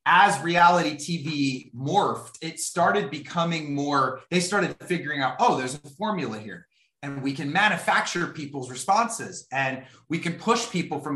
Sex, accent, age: male, American, 30-49